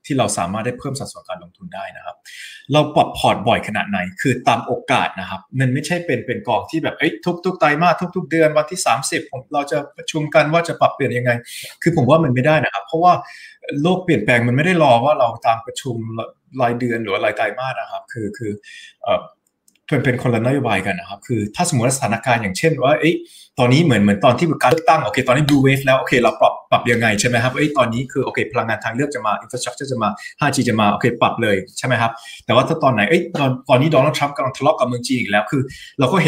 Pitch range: 120-155 Hz